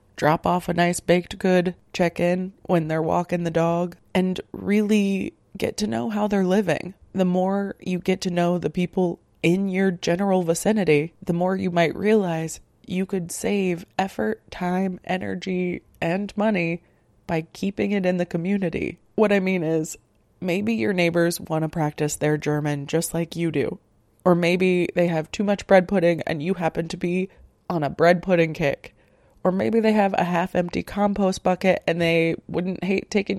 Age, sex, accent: 20-39, female, American